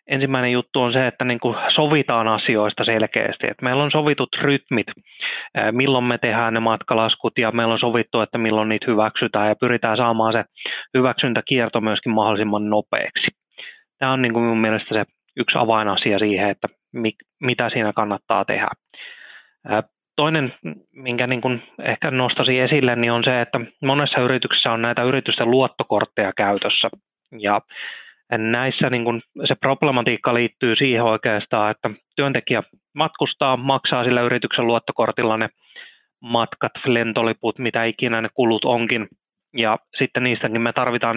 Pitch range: 110-130 Hz